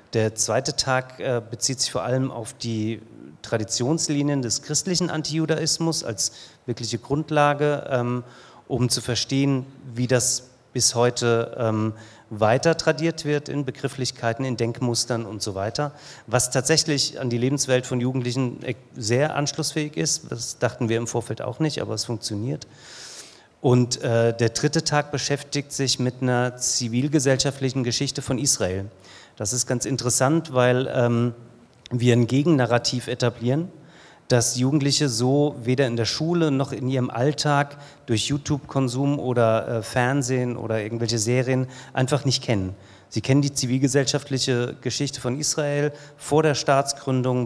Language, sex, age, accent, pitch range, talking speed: German, male, 40-59, German, 120-145 Hz, 135 wpm